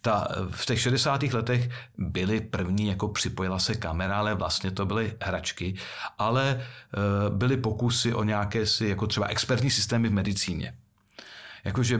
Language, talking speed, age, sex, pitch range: Czech, 145 wpm, 40-59, male, 100-125 Hz